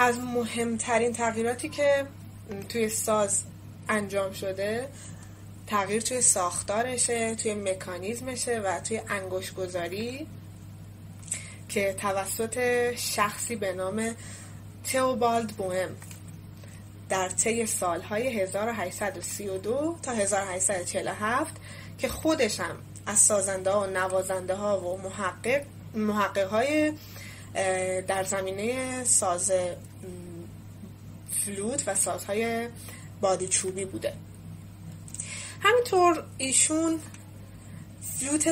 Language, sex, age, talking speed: Persian, female, 20-39, 80 wpm